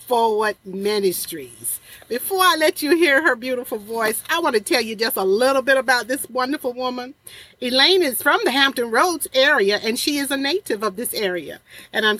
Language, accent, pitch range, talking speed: English, American, 215-305 Hz, 195 wpm